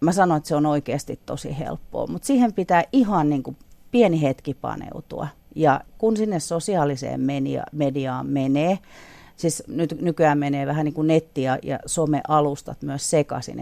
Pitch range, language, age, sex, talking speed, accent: 135-165 Hz, Finnish, 40-59, female, 160 wpm, native